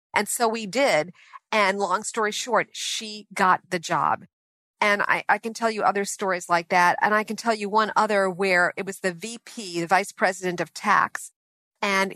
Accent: American